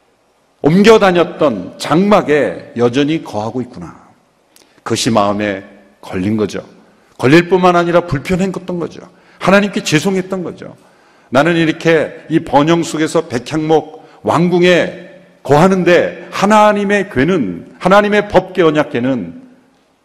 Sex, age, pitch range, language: male, 50-69, 120-180 Hz, Korean